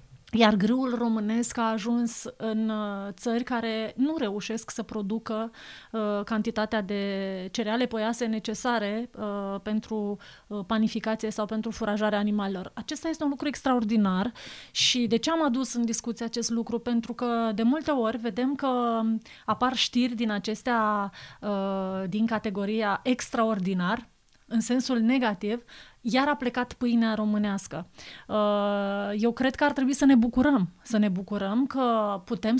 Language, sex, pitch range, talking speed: Romanian, female, 210-245 Hz, 140 wpm